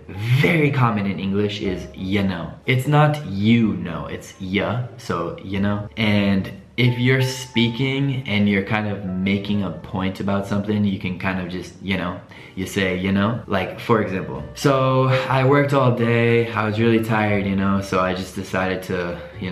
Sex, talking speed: male, 185 wpm